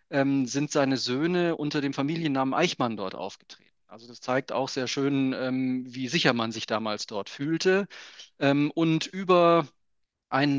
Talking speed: 140 wpm